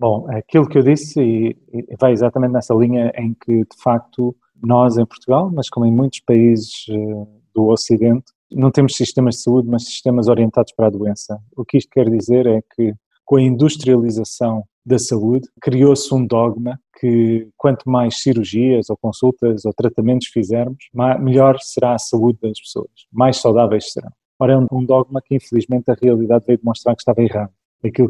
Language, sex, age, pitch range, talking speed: Portuguese, male, 20-39, 115-125 Hz, 175 wpm